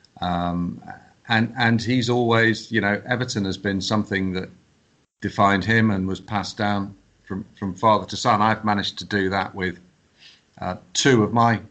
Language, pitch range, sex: English, 95-115 Hz, male